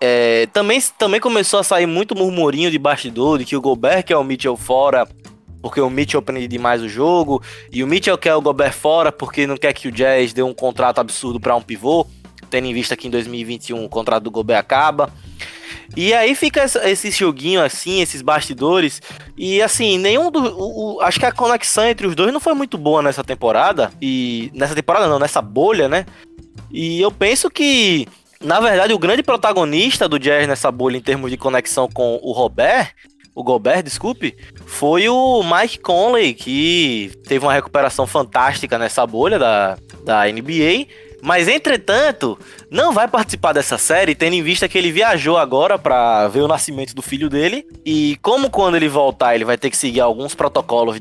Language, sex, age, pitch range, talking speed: Portuguese, male, 20-39, 120-195 Hz, 190 wpm